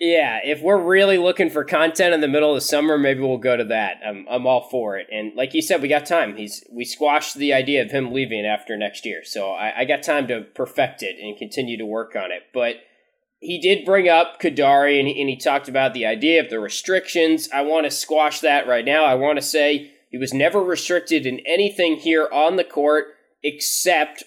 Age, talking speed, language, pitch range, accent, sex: 20-39, 230 wpm, English, 135-170 Hz, American, male